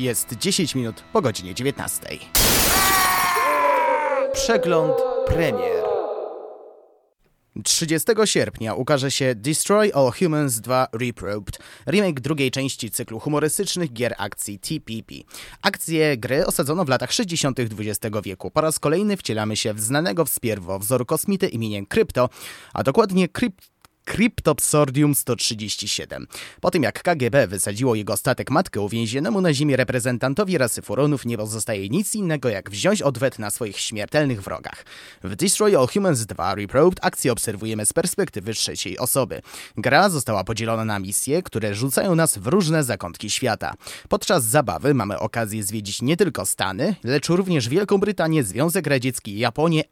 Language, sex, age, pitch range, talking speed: Polish, male, 30-49, 110-165 Hz, 140 wpm